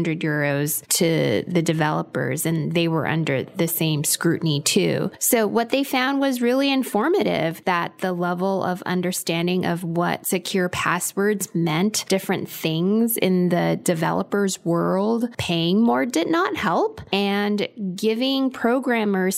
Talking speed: 135 wpm